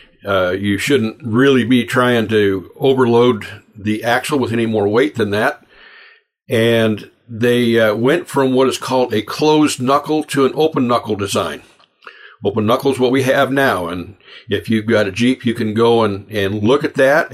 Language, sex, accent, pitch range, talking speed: English, male, American, 105-130 Hz, 185 wpm